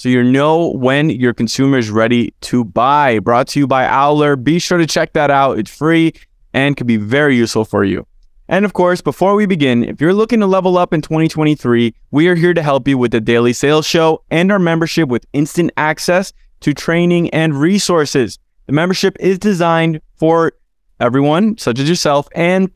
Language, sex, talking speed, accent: English, male, 200 wpm, American